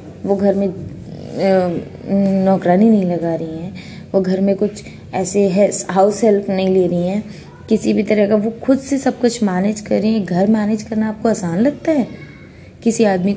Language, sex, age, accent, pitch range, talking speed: Hindi, female, 20-39, native, 175-215 Hz, 195 wpm